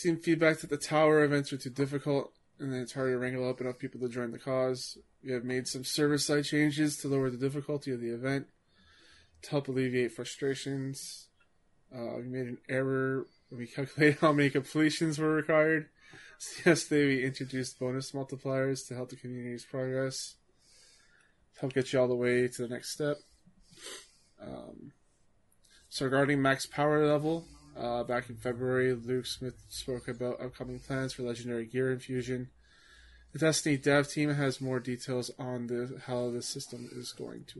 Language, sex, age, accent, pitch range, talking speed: English, male, 20-39, American, 125-140 Hz, 170 wpm